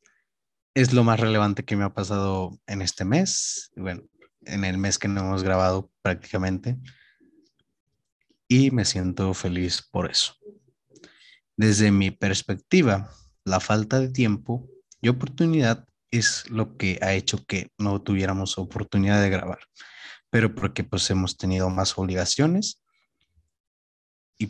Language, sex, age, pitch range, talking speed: Spanish, male, 30-49, 95-130 Hz, 130 wpm